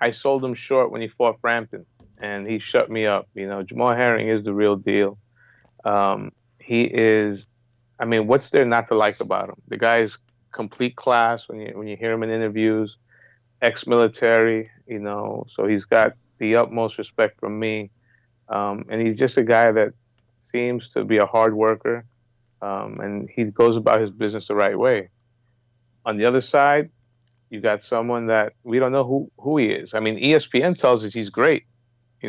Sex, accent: male, American